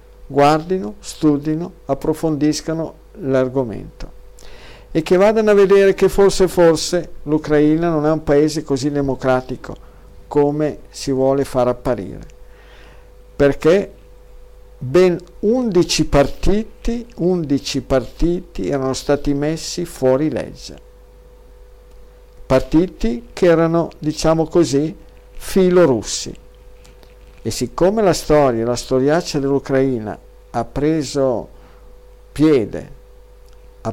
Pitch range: 120-165 Hz